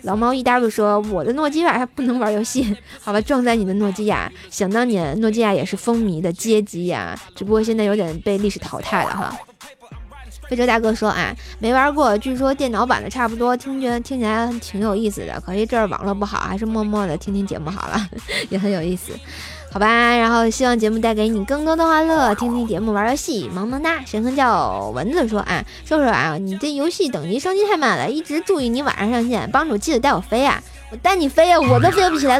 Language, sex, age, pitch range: Chinese, female, 20-39, 205-270 Hz